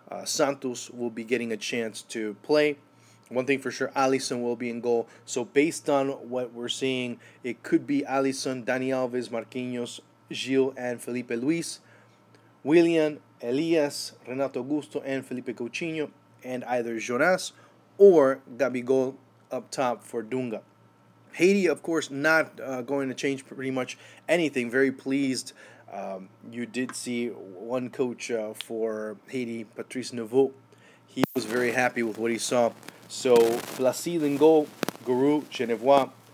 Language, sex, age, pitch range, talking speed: English, male, 30-49, 120-135 Hz, 145 wpm